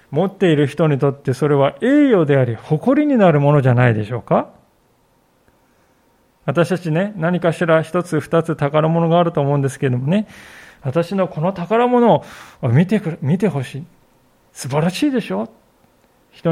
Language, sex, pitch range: Japanese, male, 135-190 Hz